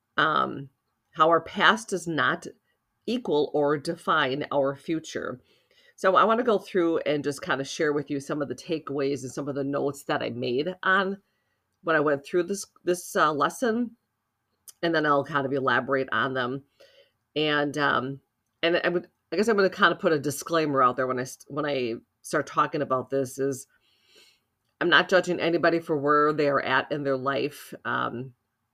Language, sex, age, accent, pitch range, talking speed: English, female, 40-59, American, 135-160 Hz, 190 wpm